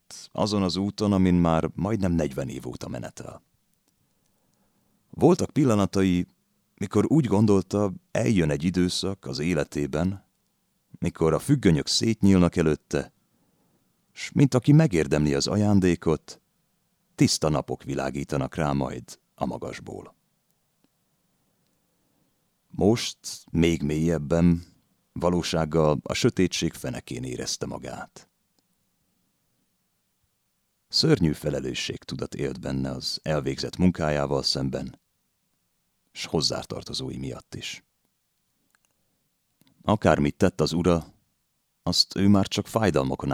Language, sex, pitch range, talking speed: Hungarian, male, 70-95 Hz, 95 wpm